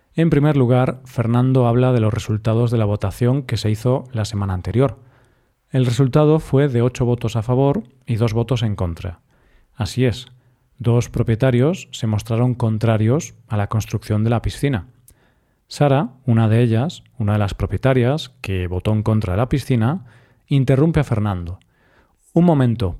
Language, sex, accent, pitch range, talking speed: Spanish, male, Spanish, 115-135 Hz, 165 wpm